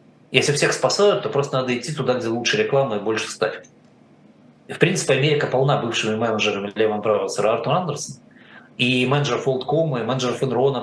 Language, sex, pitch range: Russian, male, 110-135 Hz